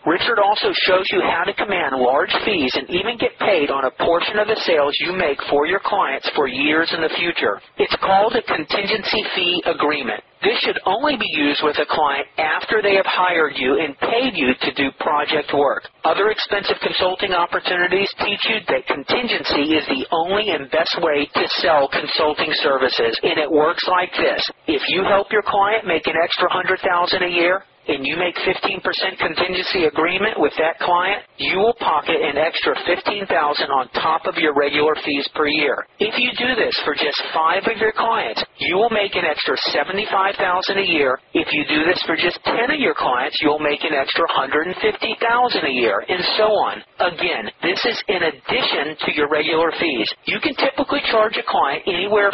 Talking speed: 190 wpm